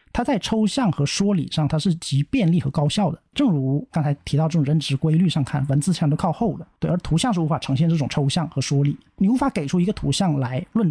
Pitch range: 145-180 Hz